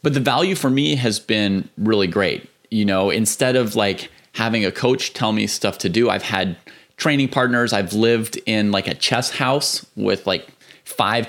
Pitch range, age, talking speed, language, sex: 95-115 Hz, 30-49, 190 wpm, English, male